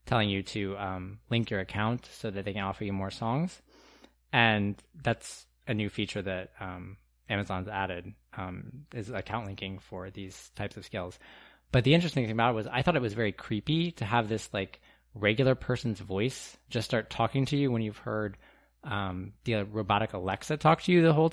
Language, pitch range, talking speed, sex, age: English, 95-120 Hz, 195 wpm, male, 20-39